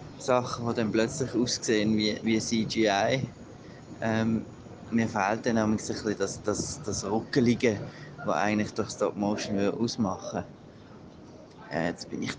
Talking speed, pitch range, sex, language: 145 wpm, 105-130 Hz, male, German